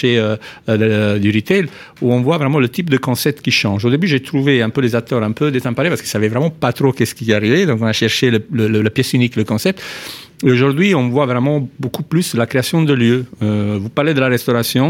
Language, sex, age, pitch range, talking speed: French, male, 50-69, 110-145 Hz, 250 wpm